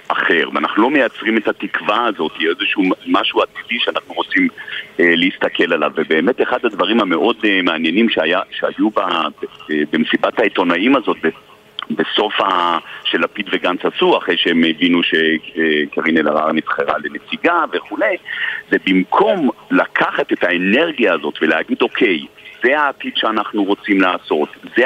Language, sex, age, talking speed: Hebrew, male, 50-69, 140 wpm